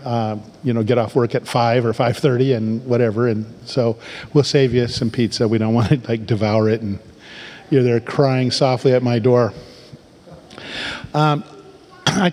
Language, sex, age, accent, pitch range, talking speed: English, male, 50-69, American, 120-150 Hz, 175 wpm